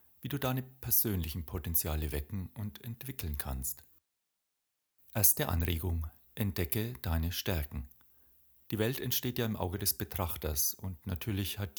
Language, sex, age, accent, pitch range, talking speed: German, male, 40-59, German, 85-115 Hz, 125 wpm